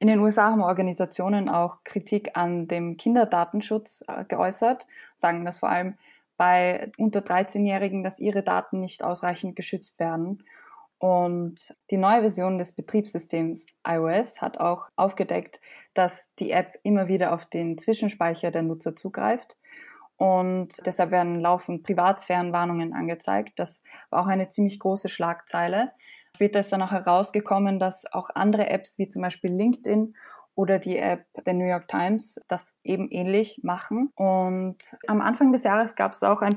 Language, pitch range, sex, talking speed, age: German, 180-210 Hz, female, 150 wpm, 20-39